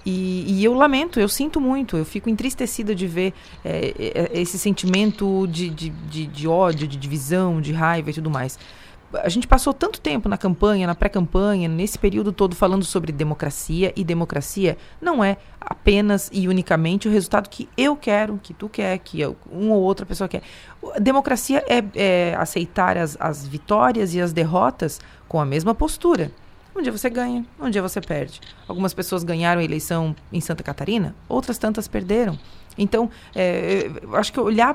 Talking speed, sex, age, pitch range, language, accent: 175 wpm, female, 30-49, 165-230 Hz, Portuguese, Brazilian